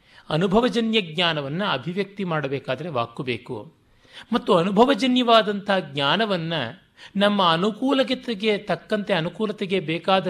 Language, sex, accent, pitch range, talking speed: Kannada, male, native, 140-200 Hz, 80 wpm